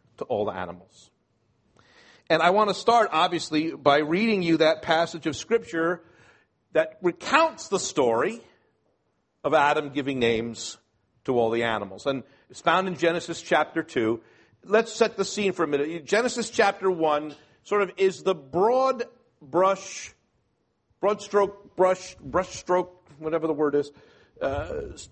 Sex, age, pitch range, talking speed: male, 50-69, 155-230 Hz, 145 wpm